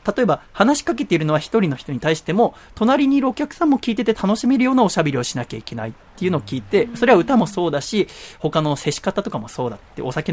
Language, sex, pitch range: Japanese, male, 135-215 Hz